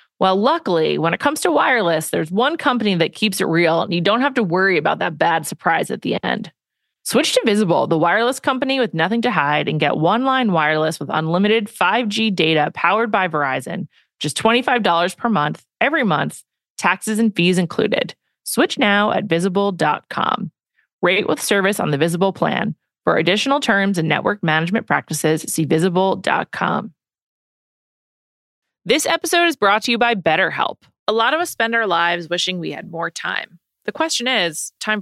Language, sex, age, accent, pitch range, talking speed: English, female, 30-49, American, 170-240 Hz, 175 wpm